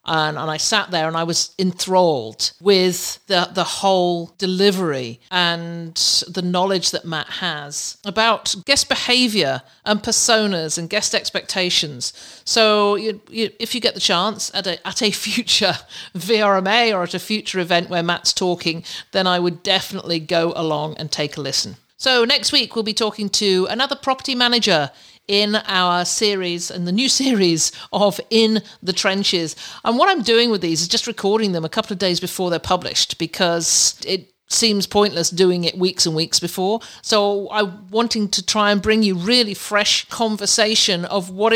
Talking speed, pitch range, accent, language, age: 175 wpm, 170-215 Hz, British, English, 50-69